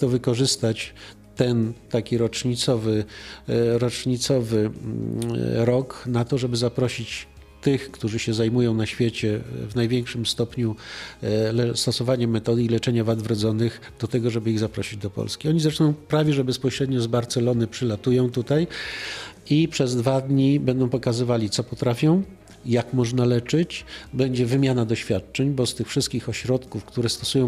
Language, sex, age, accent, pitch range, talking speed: Polish, male, 50-69, native, 115-135 Hz, 135 wpm